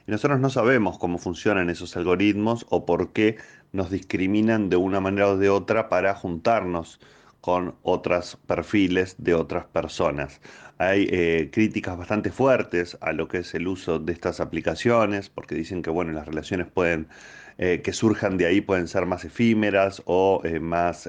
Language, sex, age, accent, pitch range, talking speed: Spanish, male, 30-49, Argentinian, 85-110 Hz, 170 wpm